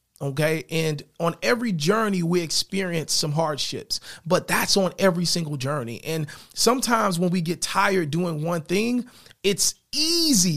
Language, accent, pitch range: English, American, 160-205 Hz